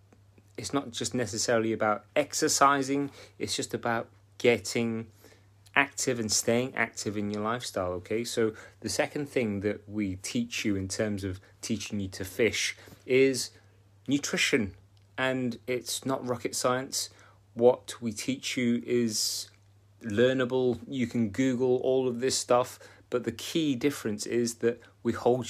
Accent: British